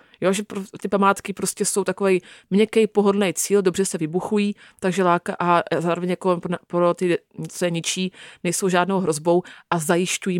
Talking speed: 175 wpm